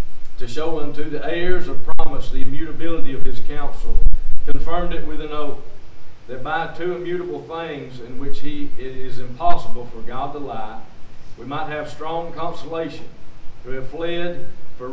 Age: 50-69